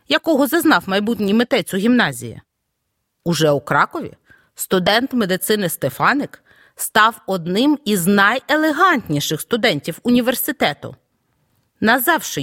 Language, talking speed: Ukrainian, 90 wpm